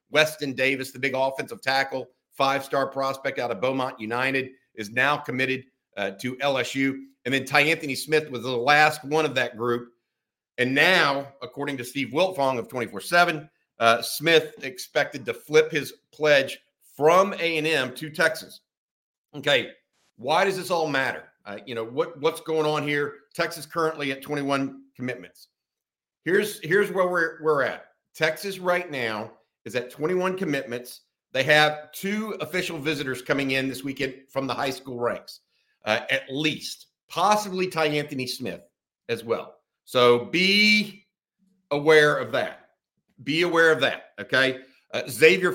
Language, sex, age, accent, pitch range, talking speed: English, male, 50-69, American, 130-155 Hz, 155 wpm